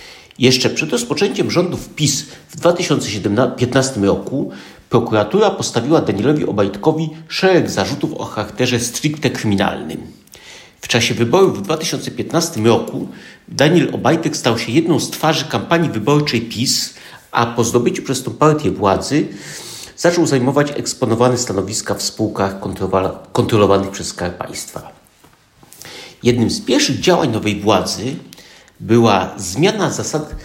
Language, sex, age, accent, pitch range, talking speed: Polish, male, 50-69, native, 110-155 Hz, 115 wpm